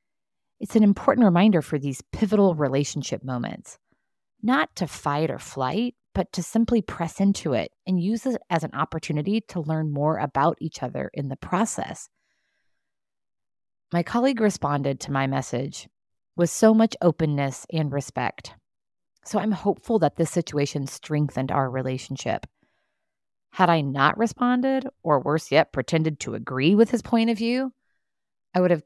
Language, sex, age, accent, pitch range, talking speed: English, female, 30-49, American, 140-190 Hz, 155 wpm